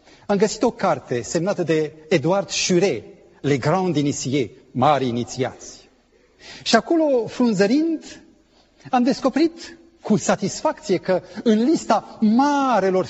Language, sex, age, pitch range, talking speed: Romanian, male, 40-59, 160-255 Hz, 110 wpm